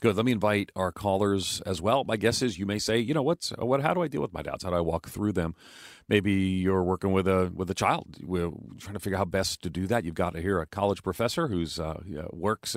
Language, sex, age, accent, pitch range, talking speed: English, male, 40-59, American, 90-105 Hz, 275 wpm